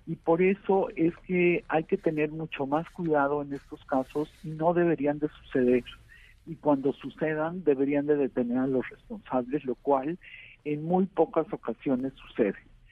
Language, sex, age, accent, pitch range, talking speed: Spanish, male, 50-69, Mexican, 130-155 Hz, 165 wpm